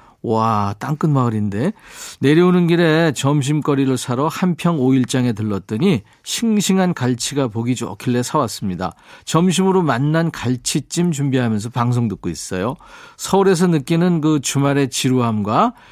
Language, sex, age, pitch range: Korean, male, 40-59, 115-160 Hz